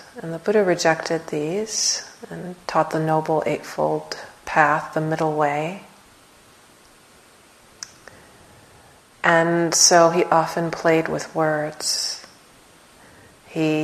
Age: 30-49